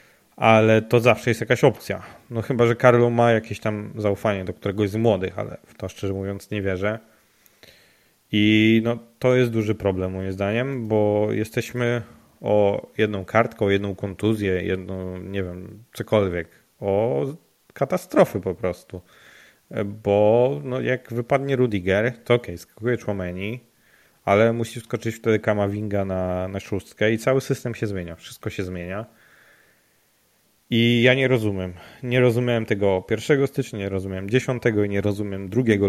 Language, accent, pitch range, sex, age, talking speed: Polish, native, 100-120 Hz, male, 30-49, 150 wpm